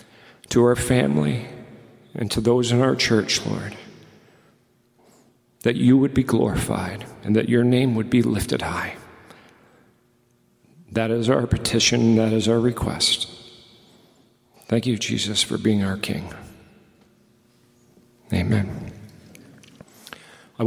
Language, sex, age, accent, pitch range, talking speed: English, male, 40-59, American, 105-120 Hz, 115 wpm